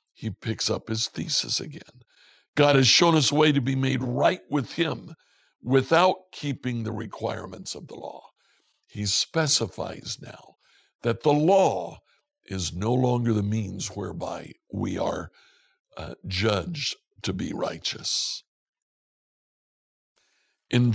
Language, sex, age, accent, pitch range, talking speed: English, male, 60-79, American, 110-145 Hz, 130 wpm